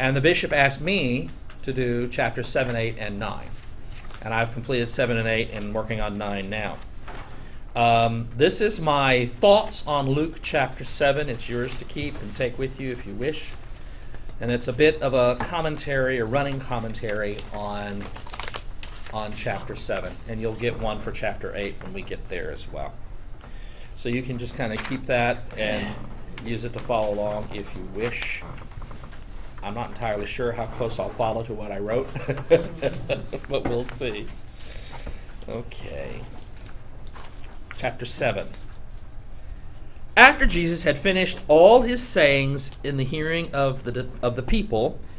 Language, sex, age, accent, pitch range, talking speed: English, male, 40-59, American, 110-145 Hz, 160 wpm